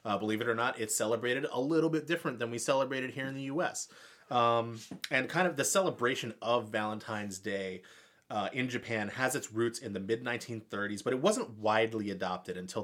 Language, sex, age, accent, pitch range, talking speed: English, male, 30-49, American, 110-140 Hz, 195 wpm